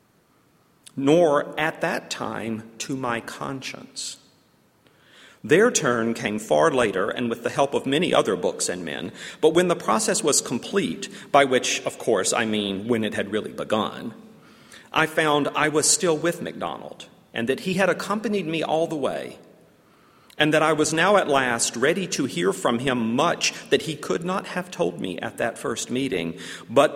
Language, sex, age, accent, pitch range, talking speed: English, male, 40-59, American, 105-150 Hz, 180 wpm